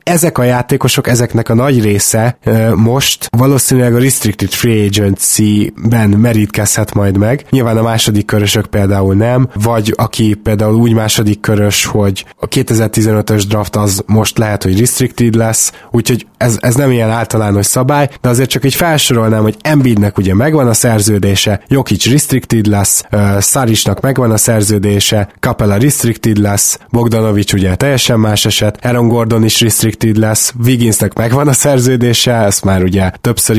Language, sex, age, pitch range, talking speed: Hungarian, male, 20-39, 105-125 Hz, 150 wpm